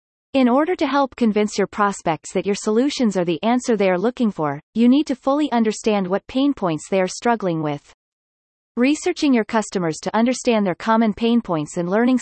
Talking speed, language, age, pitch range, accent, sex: 195 wpm, English, 30-49, 180-245 Hz, American, female